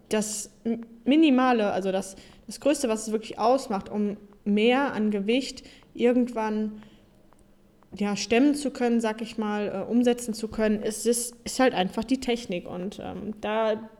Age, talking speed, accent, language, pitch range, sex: 20-39, 145 wpm, German, German, 195-225 Hz, female